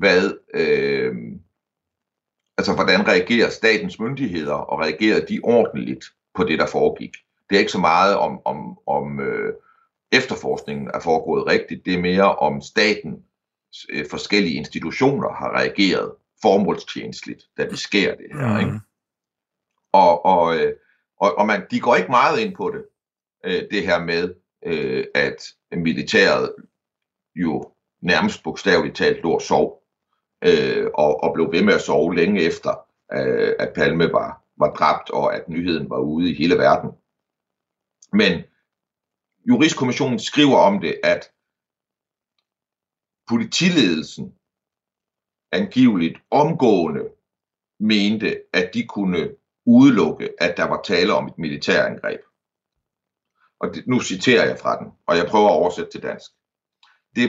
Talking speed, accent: 135 wpm, native